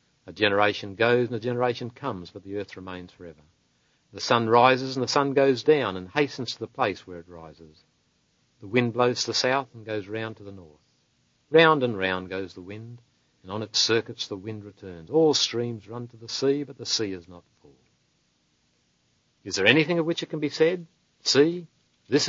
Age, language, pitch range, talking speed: 60-79, English, 95-130 Hz, 205 wpm